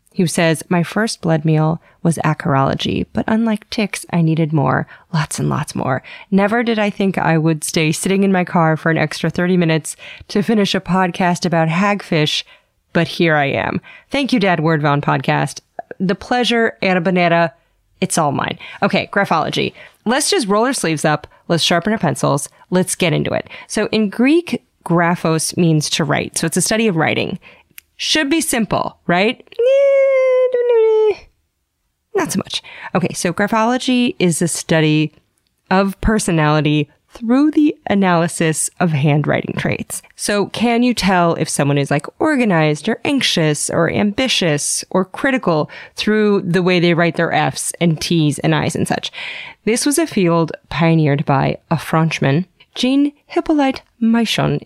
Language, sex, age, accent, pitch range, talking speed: English, female, 30-49, American, 160-225 Hz, 160 wpm